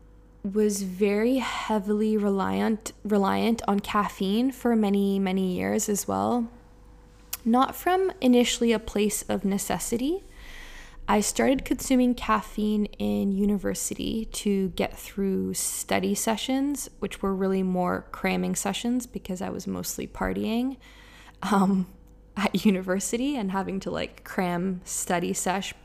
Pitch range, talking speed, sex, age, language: 190-230 Hz, 120 wpm, female, 20-39, English